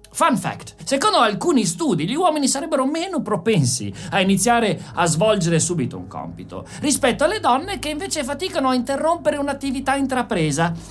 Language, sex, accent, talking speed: Italian, male, native, 150 wpm